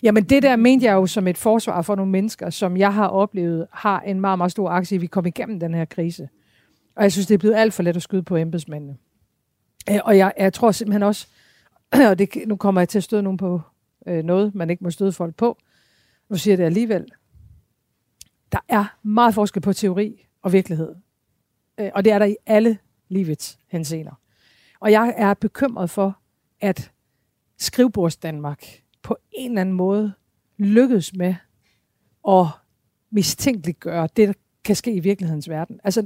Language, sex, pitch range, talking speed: Danish, female, 175-215 Hz, 185 wpm